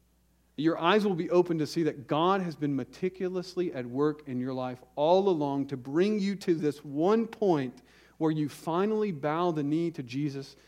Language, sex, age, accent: English, male, 40-59, American